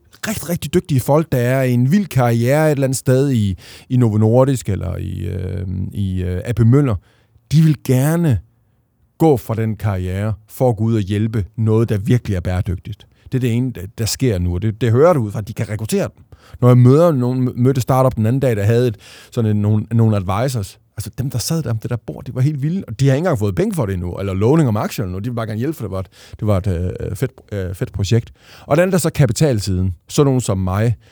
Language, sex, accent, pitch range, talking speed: Danish, male, native, 105-135 Hz, 245 wpm